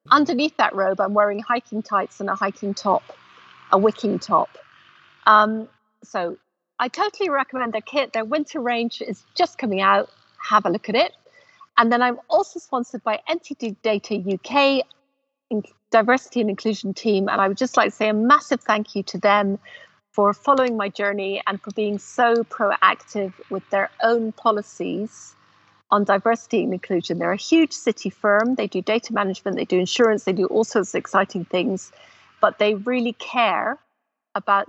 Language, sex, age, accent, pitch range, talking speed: English, female, 40-59, British, 195-240 Hz, 175 wpm